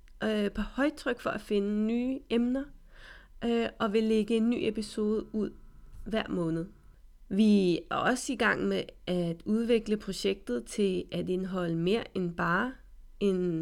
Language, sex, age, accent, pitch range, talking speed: Danish, female, 30-49, native, 195-245 Hz, 140 wpm